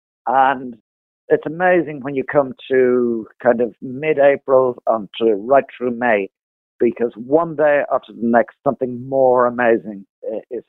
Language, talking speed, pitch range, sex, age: English, 135 wpm, 105-150 Hz, male, 50-69